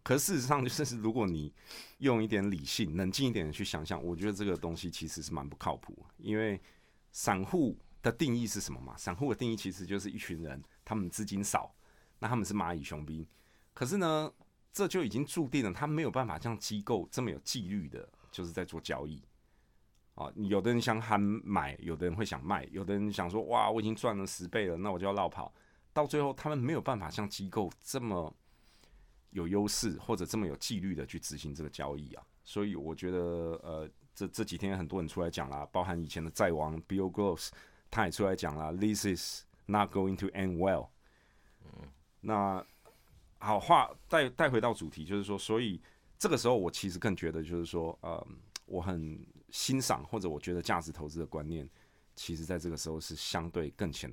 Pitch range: 85-110 Hz